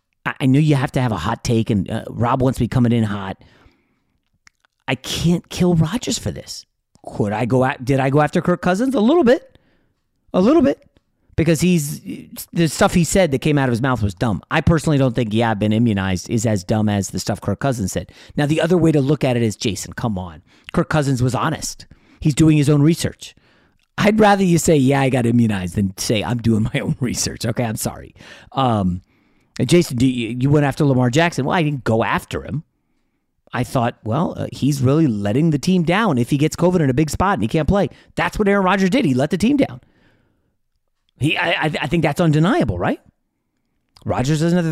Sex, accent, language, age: male, American, English, 40-59